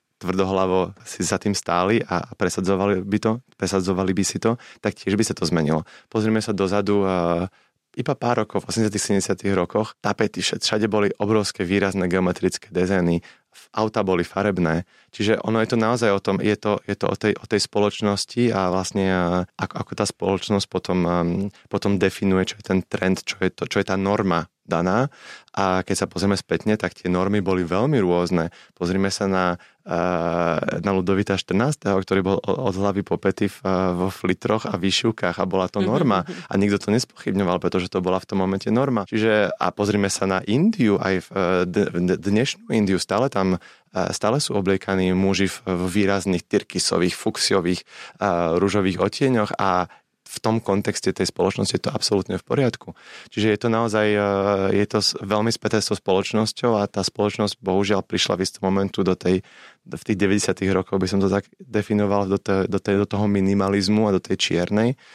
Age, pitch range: 20-39, 95-105 Hz